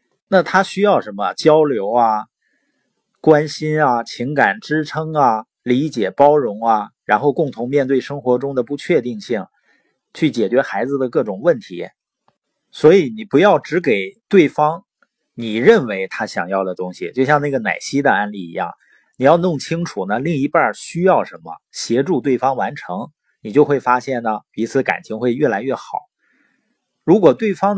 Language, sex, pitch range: Chinese, male, 125-175 Hz